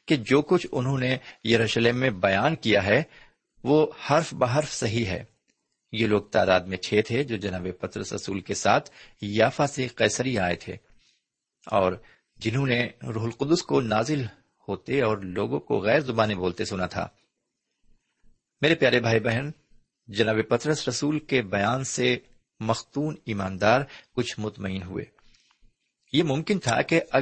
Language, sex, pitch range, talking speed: Urdu, male, 105-130 Hz, 150 wpm